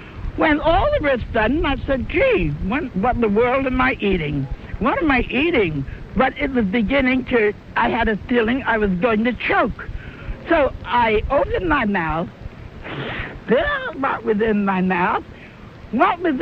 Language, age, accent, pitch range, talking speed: English, 60-79, American, 195-280 Hz, 170 wpm